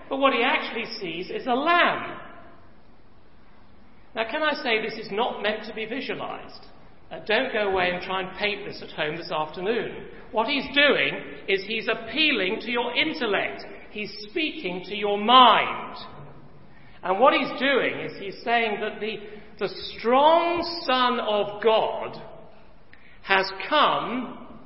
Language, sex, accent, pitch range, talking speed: English, male, British, 170-255 Hz, 150 wpm